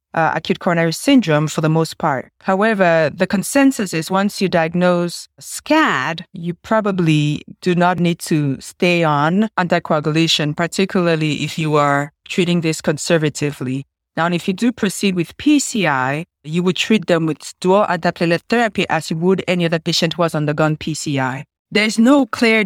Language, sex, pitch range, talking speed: English, female, 160-205 Hz, 160 wpm